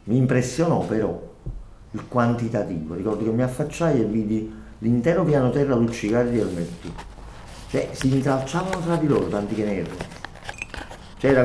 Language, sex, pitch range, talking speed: Italian, male, 95-120 Hz, 140 wpm